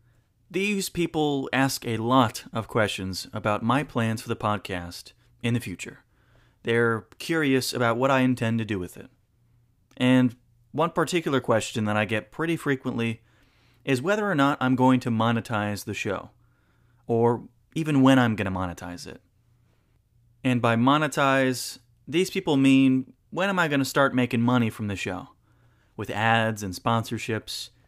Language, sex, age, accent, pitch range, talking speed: English, male, 30-49, American, 110-130 Hz, 160 wpm